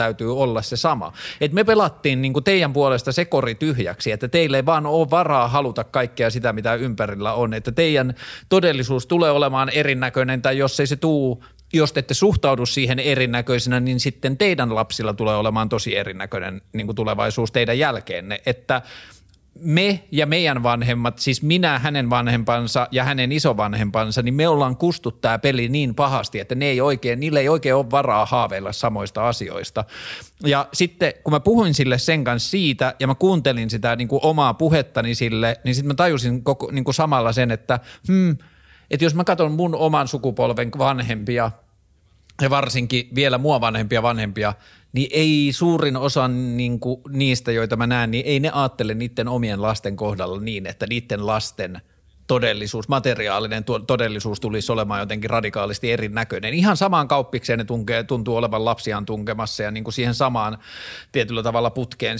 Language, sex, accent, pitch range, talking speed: Finnish, male, native, 115-145 Hz, 165 wpm